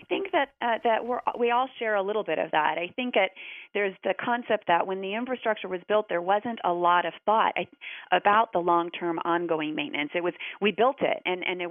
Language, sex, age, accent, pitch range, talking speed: English, female, 30-49, American, 175-220 Hz, 225 wpm